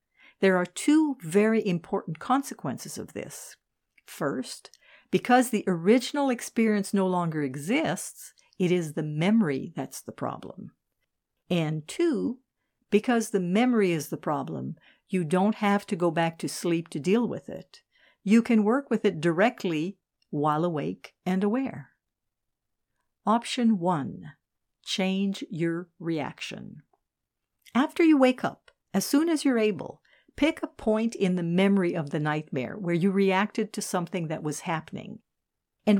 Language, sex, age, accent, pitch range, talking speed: English, female, 60-79, American, 170-230 Hz, 140 wpm